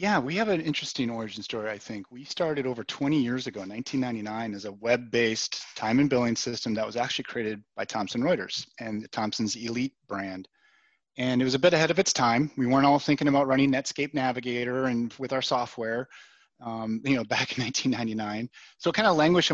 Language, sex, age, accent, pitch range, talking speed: English, male, 30-49, American, 115-135 Hz, 205 wpm